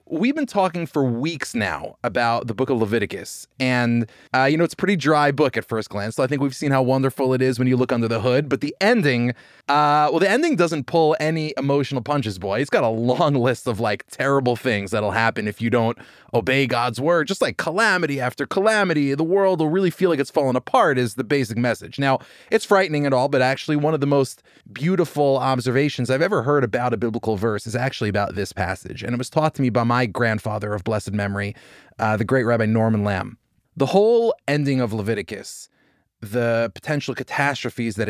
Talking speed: 215 wpm